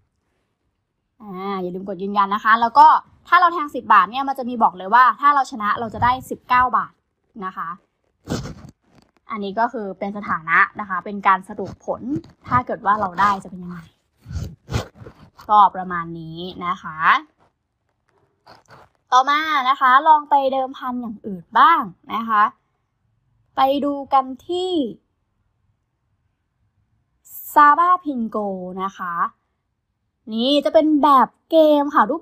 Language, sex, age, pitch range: Thai, female, 20-39, 200-280 Hz